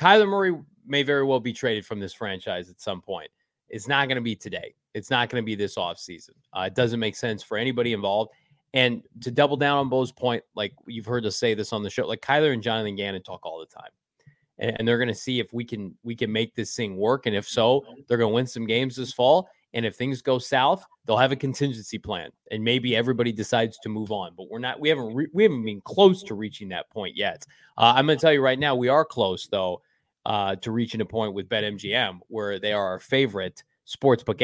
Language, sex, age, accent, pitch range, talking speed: English, male, 20-39, American, 110-135 Hz, 250 wpm